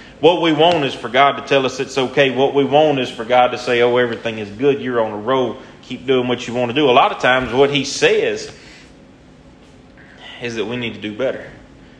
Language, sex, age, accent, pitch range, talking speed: English, male, 30-49, American, 105-130 Hz, 240 wpm